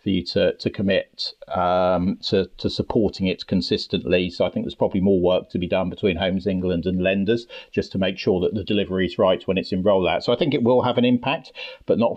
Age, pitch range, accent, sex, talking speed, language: 40-59, 90-110 Hz, British, male, 235 wpm, English